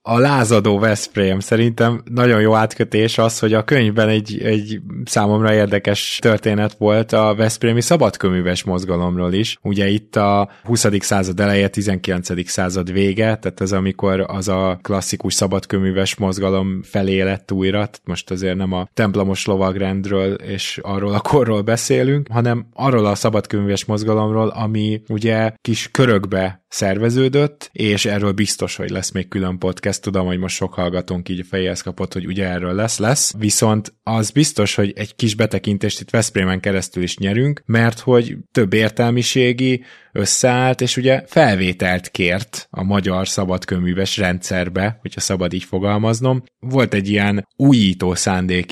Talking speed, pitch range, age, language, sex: 145 wpm, 95-110 Hz, 20-39, Hungarian, male